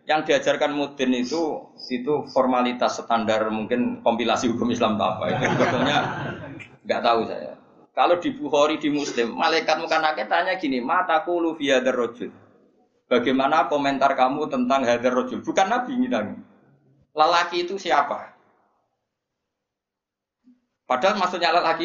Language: Indonesian